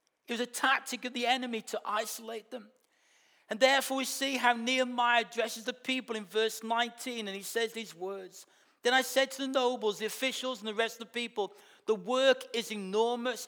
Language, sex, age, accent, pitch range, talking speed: English, male, 40-59, British, 230-280 Hz, 200 wpm